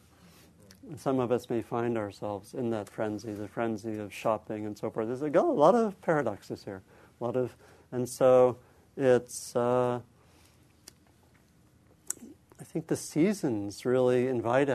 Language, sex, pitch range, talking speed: English, male, 115-140 Hz, 140 wpm